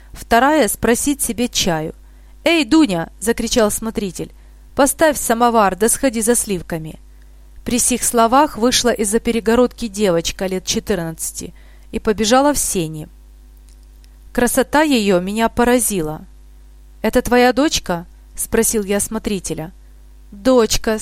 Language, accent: Russian, native